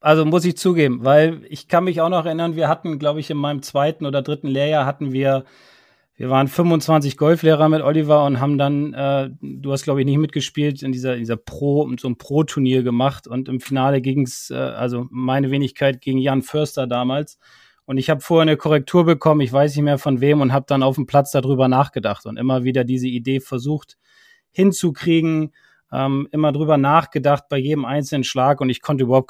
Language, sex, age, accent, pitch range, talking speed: German, male, 30-49, German, 130-150 Hz, 205 wpm